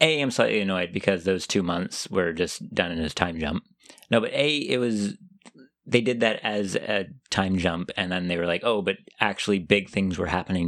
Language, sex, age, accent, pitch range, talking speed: English, male, 30-49, American, 85-110 Hz, 220 wpm